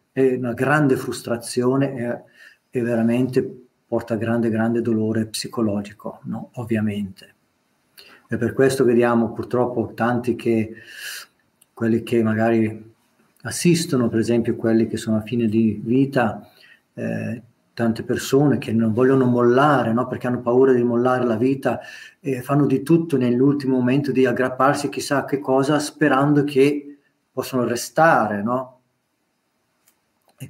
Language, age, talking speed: Italian, 40-59, 135 wpm